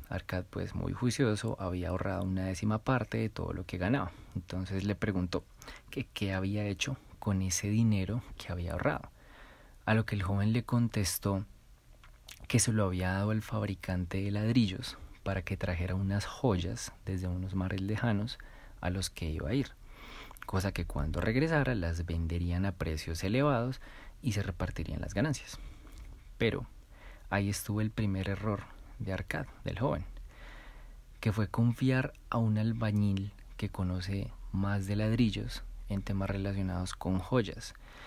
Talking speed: 155 wpm